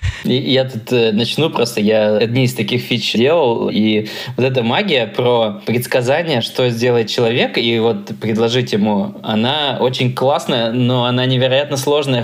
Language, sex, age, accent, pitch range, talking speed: Russian, male, 20-39, native, 110-130 Hz, 150 wpm